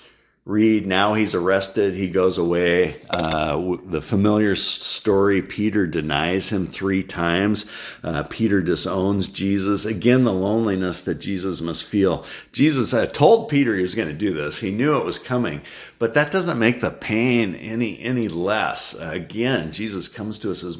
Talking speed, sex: 170 wpm, male